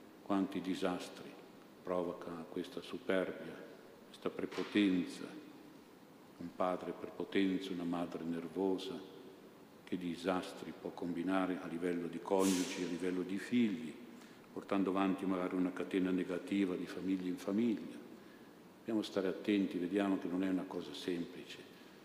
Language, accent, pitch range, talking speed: Italian, native, 90-95 Hz, 120 wpm